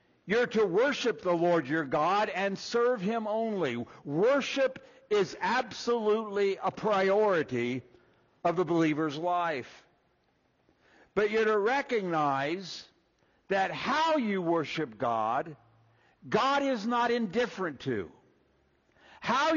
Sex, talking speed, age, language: male, 105 wpm, 60-79, English